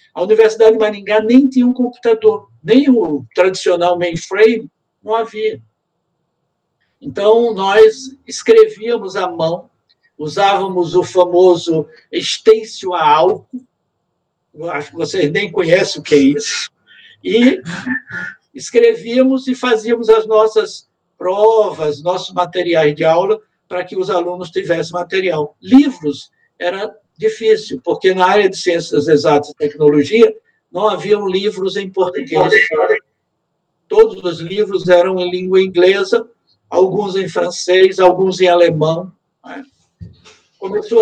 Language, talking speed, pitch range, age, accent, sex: Portuguese, 120 wpm, 175-230 Hz, 60-79, Brazilian, male